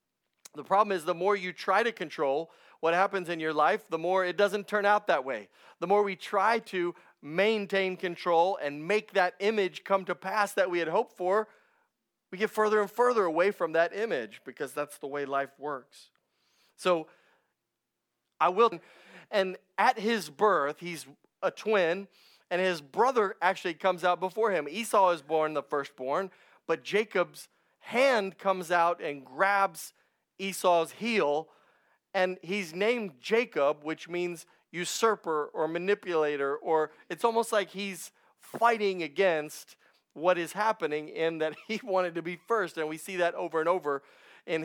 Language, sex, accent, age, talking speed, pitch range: English, male, American, 30-49, 165 wpm, 155-200 Hz